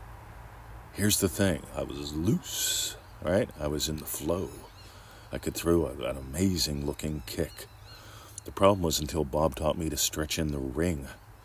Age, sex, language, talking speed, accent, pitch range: 40-59, male, English, 160 wpm, American, 80-105 Hz